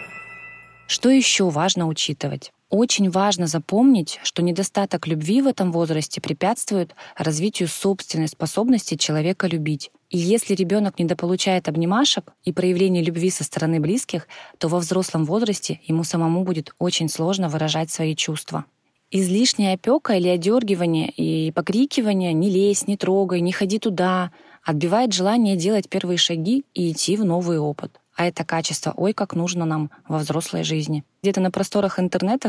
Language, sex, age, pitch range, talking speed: Russian, female, 20-39, 160-195 Hz, 150 wpm